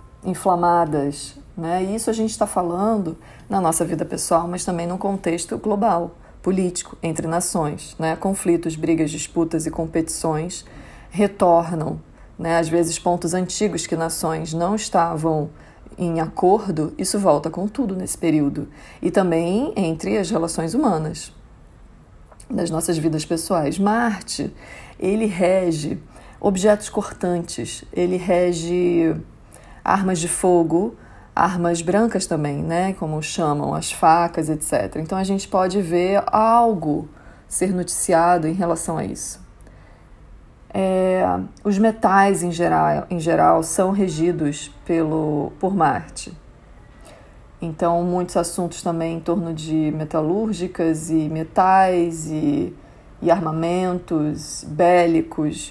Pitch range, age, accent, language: 160-185 Hz, 40-59, Brazilian, Portuguese